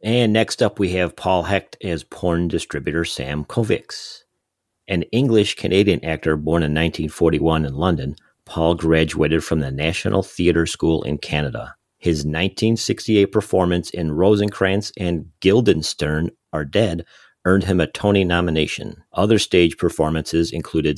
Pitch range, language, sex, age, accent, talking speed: 80-100 Hz, English, male, 40-59, American, 135 wpm